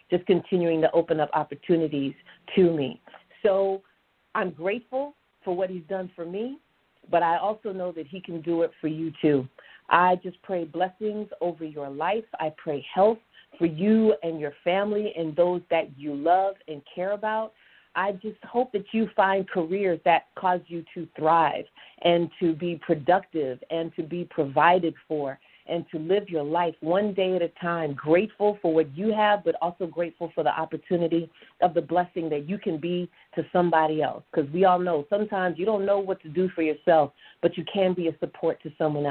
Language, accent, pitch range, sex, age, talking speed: English, American, 160-195 Hz, female, 40-59, 190 wpm